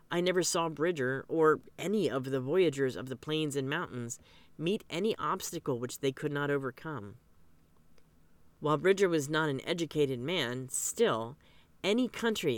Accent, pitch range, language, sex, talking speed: American, 135-185 Hz, English, female, 155 wpm